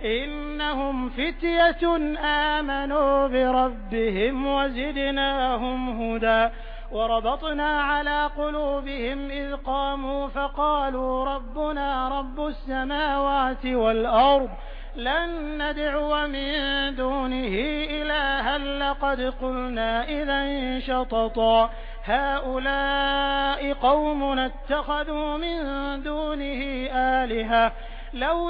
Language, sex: Hindi, male